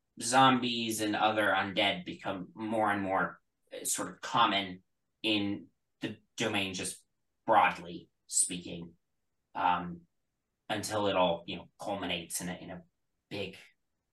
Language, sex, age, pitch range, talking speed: English, male, 20-39, 90-115 Hz, 125 wpm